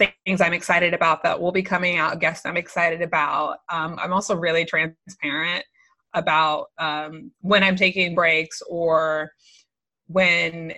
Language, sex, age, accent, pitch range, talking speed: English, female, 20-39, American, 160-190 Hz, 145 wpm